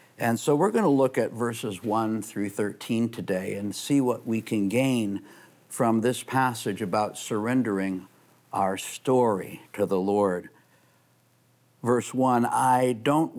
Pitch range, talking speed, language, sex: 110-140 Hz, 145 wpm, English, male